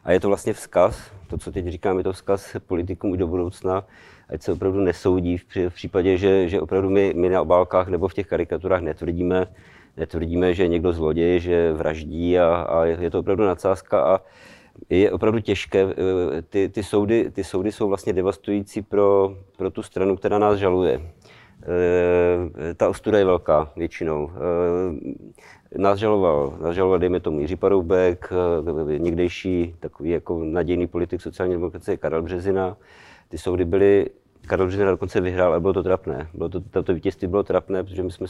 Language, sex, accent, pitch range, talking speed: Czech, male, native, 90-95 Hz, 160 wpm